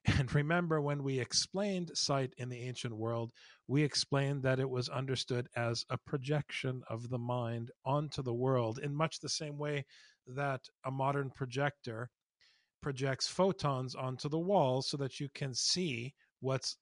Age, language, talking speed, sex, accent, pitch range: 50-69, English, 160 wpm, male, American, 130-180 Hz